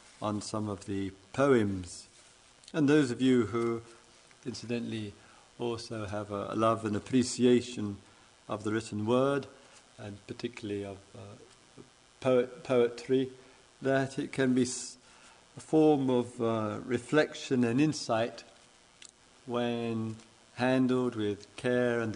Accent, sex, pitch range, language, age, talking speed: British, male, 100-125 Hz, English, 50-69, 115 wpm